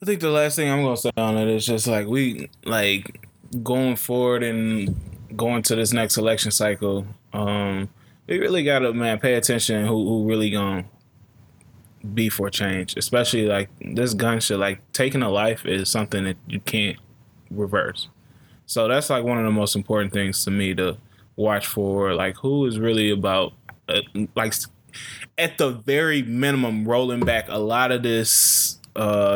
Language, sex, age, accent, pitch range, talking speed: English, male, 20-39, American, 105-120 Hz, 180 wpm